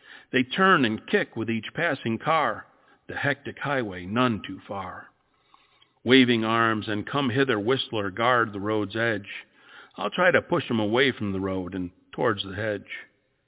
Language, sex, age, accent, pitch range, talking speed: English, male, 50-69, American, 100-125 Hz, 160 wpm